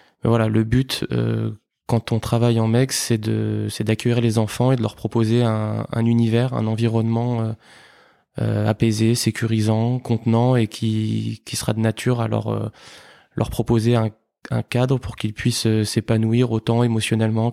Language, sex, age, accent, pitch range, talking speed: French, male, 20-39, French, 110-120 Hz, 170 wpm